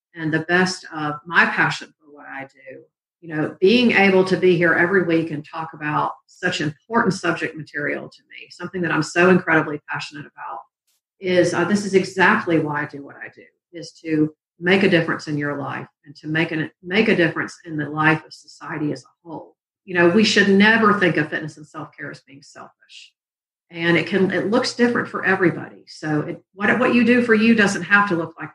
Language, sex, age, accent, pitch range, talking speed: English, female, 50-69, American, 155-185 Hz, 215 wpm